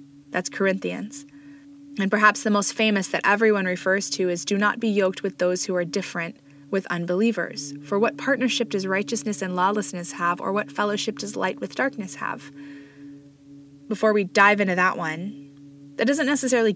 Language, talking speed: English, 170 wpm